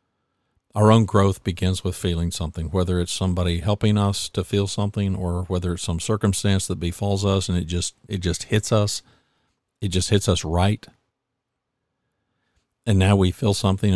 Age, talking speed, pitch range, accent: 50-69, 170 wpm, 90-110 Hz, American